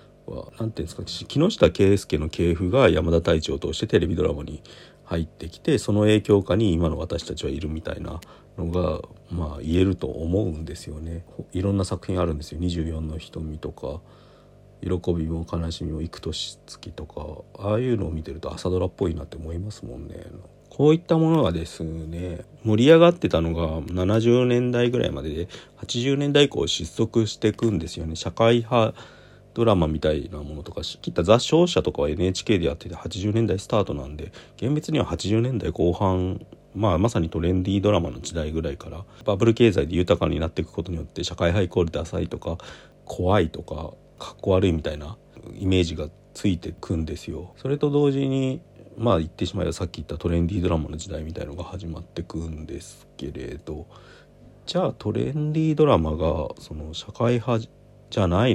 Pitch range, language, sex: 80-110 Hz, Japanese, male